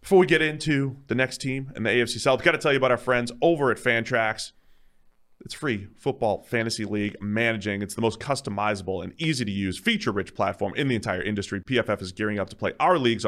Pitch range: 100-130 Hz